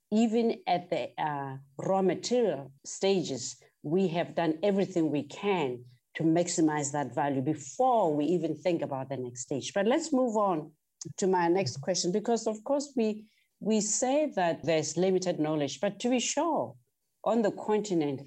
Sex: female